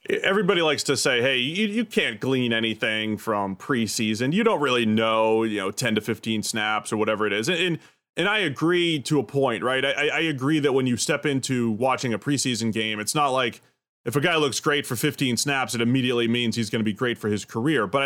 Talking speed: 230 wpm